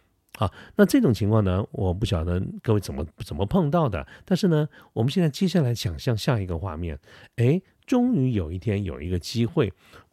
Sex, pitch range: male, 95-130 Hz